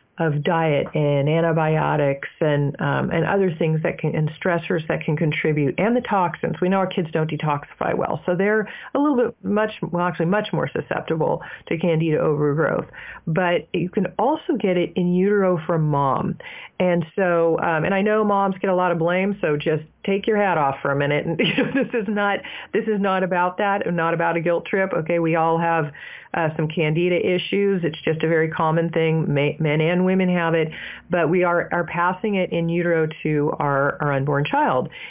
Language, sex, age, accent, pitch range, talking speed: English, female, 40-59, American, 155-185 Hz, 200 wpm